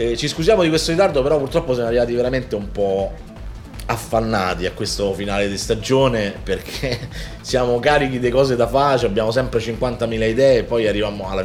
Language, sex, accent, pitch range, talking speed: Italian, male, native, 100-130 Hz, 175 wpm